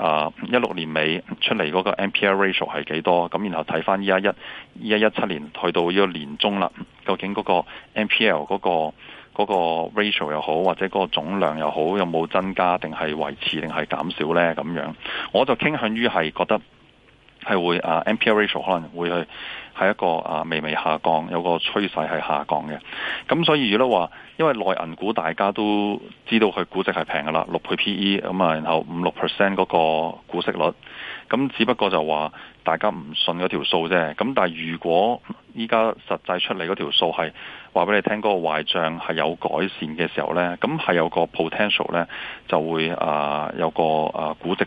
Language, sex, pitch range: Chinese, male, 80-100 Hz